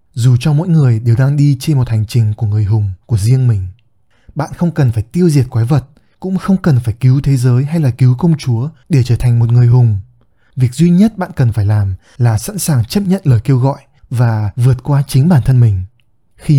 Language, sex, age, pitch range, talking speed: Vietnamese, male, 20-39, 115-150 Hz, 240 wpm